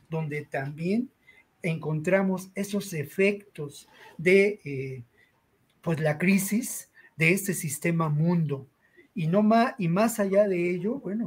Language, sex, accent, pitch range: Spanish, male, Mexican, 150-190 Hz